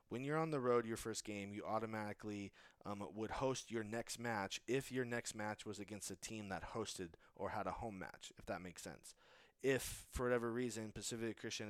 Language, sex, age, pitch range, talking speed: English, male, 20-39, 100-120 Hz, 210 wpm